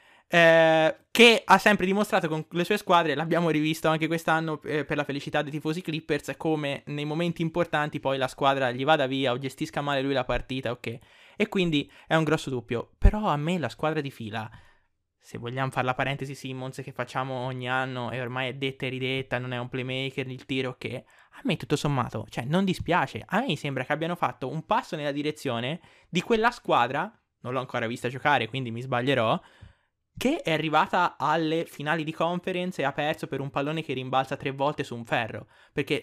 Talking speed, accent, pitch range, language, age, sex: 205 wpm, native, 130-175 Hz, Italian, 20-39, male